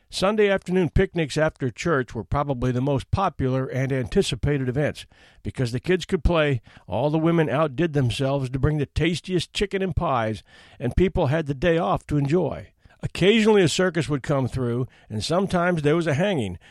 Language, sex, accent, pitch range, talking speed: English, male, American, 130-185 Hz, 180 wpm